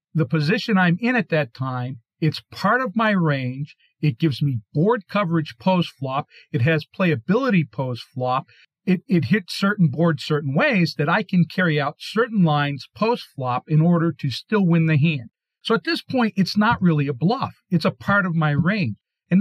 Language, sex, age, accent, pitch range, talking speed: English, male, 50-69, American, 145-190 Hz, 185 wpm